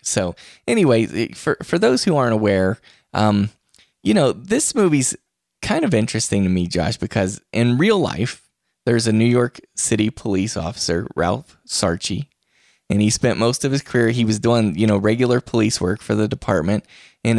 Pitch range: 95-115 Hz